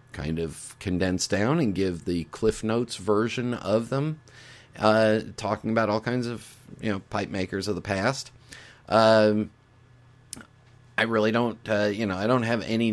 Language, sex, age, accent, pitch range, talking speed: English, male, 40-59, American, 90-120 Hz, 165 wpm